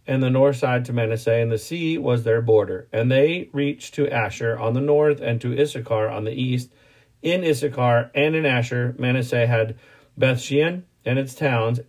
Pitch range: 120-145 Hz